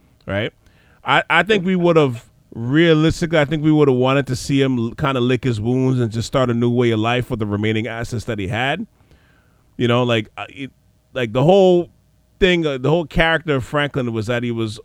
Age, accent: 30-49, American